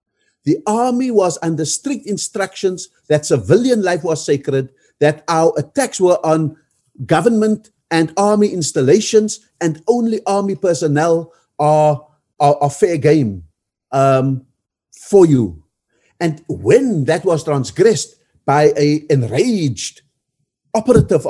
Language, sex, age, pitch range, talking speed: English, male, 50-69, 145-195 Hz, 115 wpm